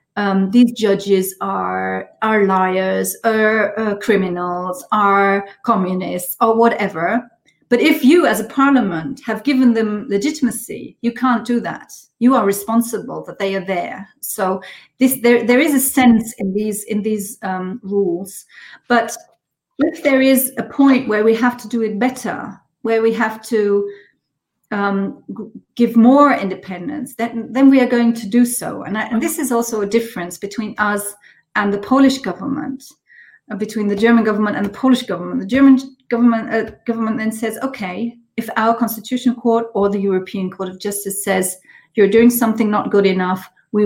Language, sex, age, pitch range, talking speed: Polish, female, 40-59, 195-240 Hz, 170 wpm